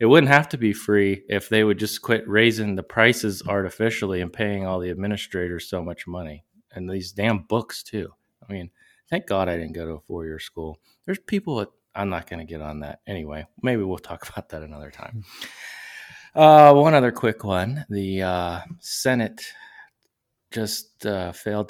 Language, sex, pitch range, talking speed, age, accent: English, male, 90-110 Hz, 190 wpm, 30-49, American